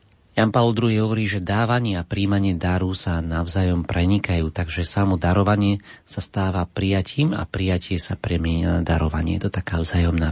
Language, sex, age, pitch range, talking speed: Slovak, male, 40-59, 85-100 Hz, 165 wpm